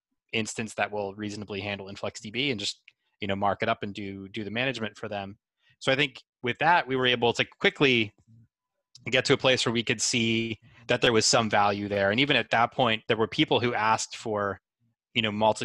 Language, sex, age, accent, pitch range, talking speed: English, male, 20-39, American, 100-120 Hz, 220 wpm